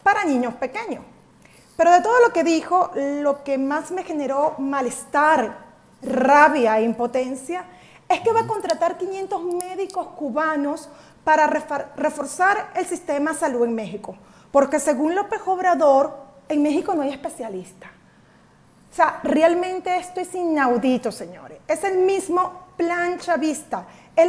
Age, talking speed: 30-49, 140 wpm